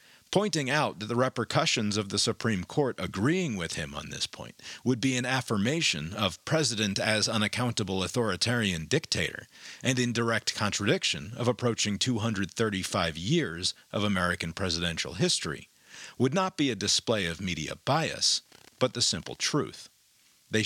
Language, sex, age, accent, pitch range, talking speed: English, male, 40-59, American, 95-130 Hz, 145 wpm